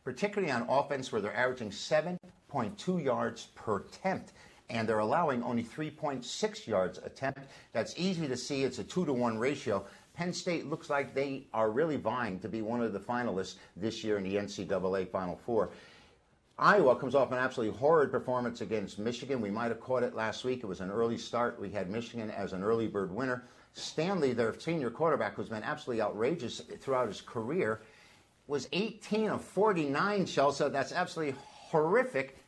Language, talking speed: English, 175 wpm